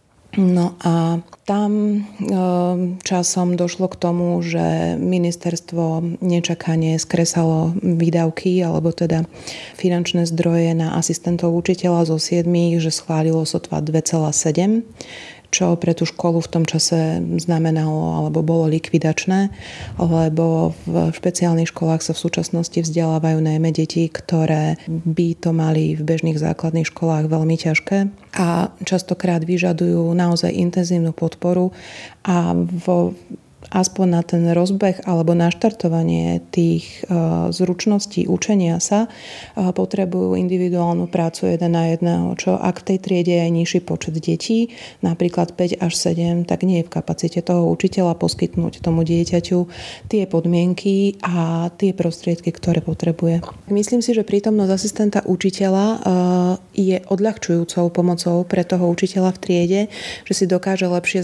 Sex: female